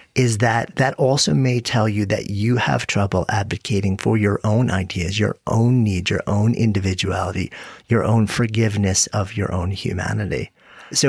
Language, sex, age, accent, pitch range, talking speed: English, male, 40-59, American, 95-115 Hz, 160 wpm